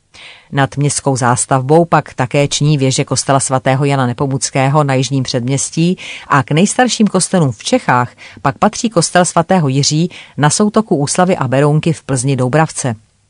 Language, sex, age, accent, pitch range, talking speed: Czech, female, 40-59, native, 130-160 Hz, 150 wpm